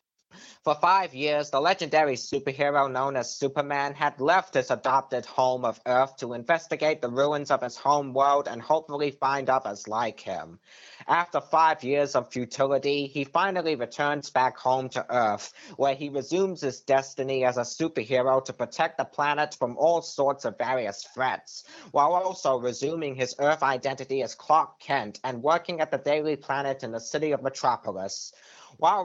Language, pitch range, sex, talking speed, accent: English, 130-155 Hz, male, 165 wpm, American